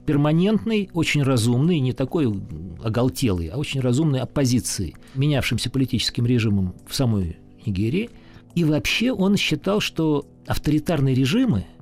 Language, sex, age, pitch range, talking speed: Russian, male, 50-69, 115-155 Hz, 115 wpm